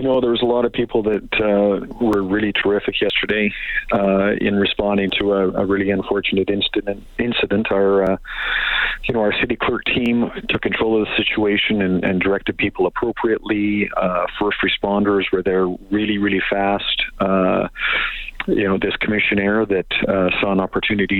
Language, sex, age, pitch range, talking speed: English, male, 40-59, 95-105 Hz, 170 wpm